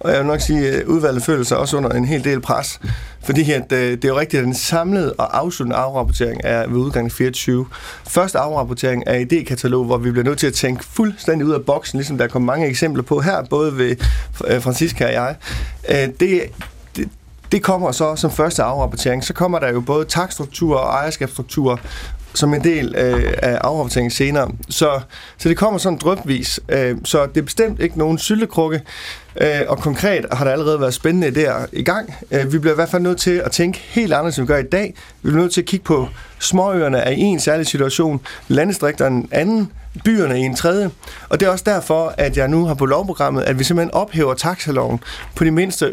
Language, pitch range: Danish, 130-175 Hz